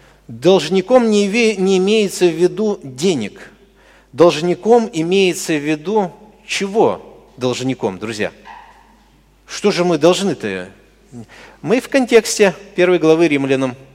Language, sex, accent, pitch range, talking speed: Russian, male, native, 150-225 Hz, 100 wpm